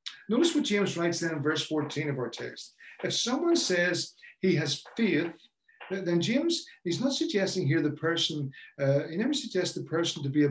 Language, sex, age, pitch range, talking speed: English, male, 50-69, 170-230 Hz, 195 wpm